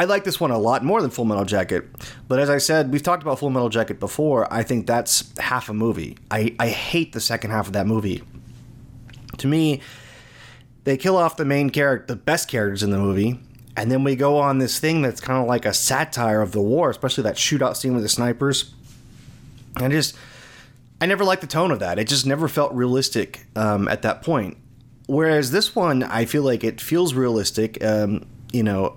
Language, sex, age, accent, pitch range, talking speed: English, male, 30-49, American, 110-140 Hz, 215 wpm